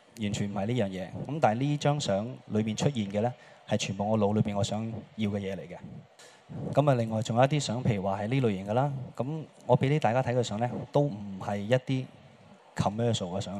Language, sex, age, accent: Chinese, male, 20-39, native